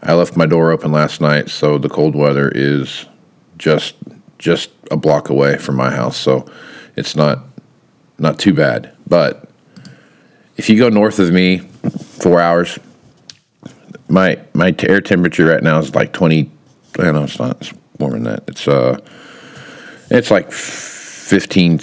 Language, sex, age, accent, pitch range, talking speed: English, male, 50-69, American, 70-85 Hz, 155 wpm